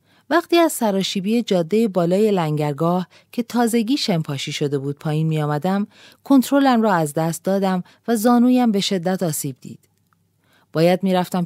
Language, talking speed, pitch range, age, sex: Persian, 135 wpm, 145-205 Hz, 40-59, female